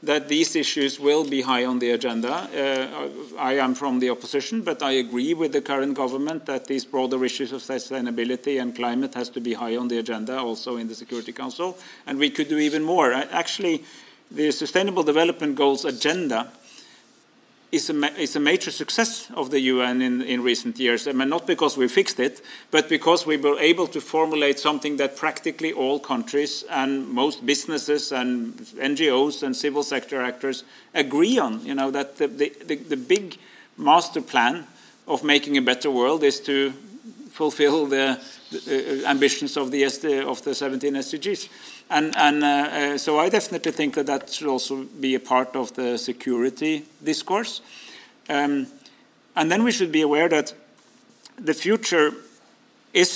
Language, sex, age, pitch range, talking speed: English, male, 40-59, 130-160 Hz, 170 wpm